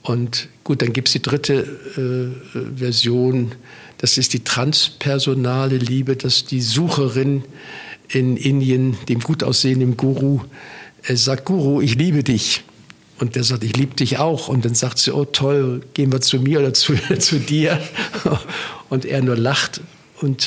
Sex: male